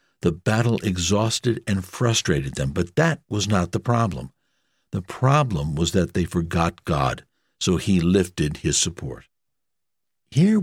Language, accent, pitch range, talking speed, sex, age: English, American, 90-115 Hz, 140 wpm, male, 60-79